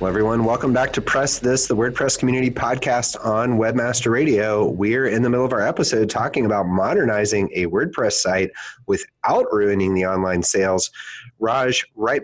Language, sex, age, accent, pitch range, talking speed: English, male, 30-49, American, 95-125 Hz, 165 wpm